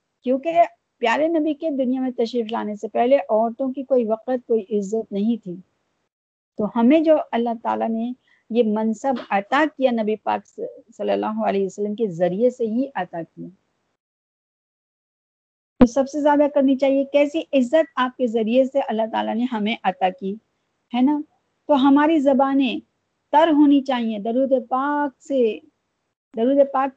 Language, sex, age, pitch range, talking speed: Urdu, female, 50-69, 225-280 Hz, 160 wpm